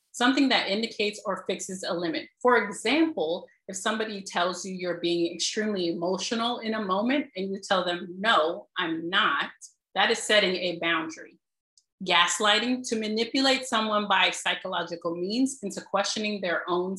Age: 30-49